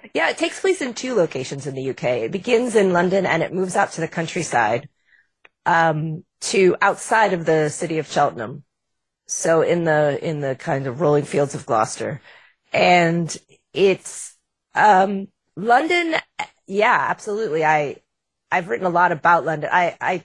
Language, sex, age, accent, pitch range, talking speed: English, female, 30-49, American, 155-195 Hz, 165 wpm